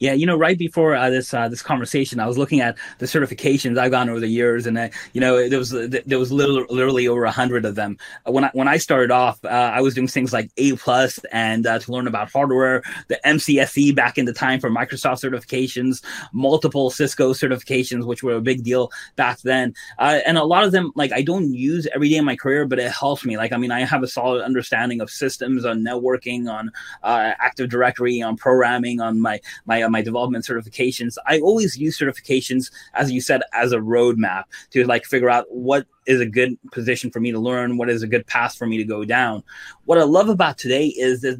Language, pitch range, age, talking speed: English, 120-135 Hz, 20-39, 230 wpm